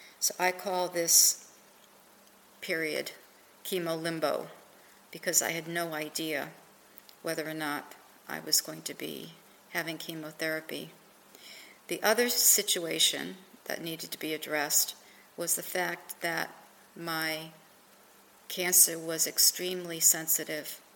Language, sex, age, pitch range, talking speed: English, female, 50-69, 160-180 Hz, 110 wpm